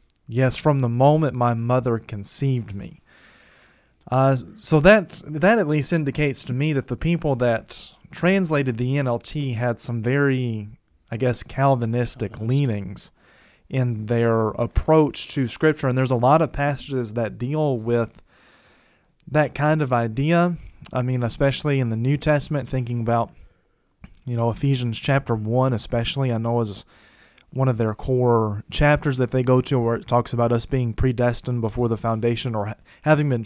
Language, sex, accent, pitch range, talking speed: English, male, American, 115-140 Hz, 160 wpm